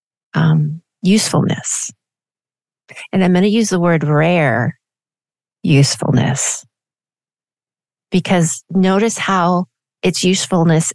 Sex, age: female, 30-49